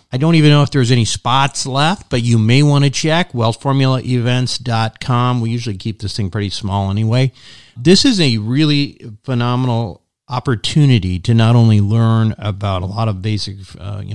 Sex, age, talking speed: male, 40-59, 175 wpm